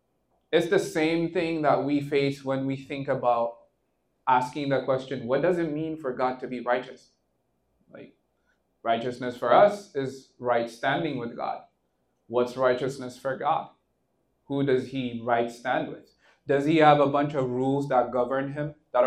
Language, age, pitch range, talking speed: English, 20-39, 125-150 Hz, 165 wpm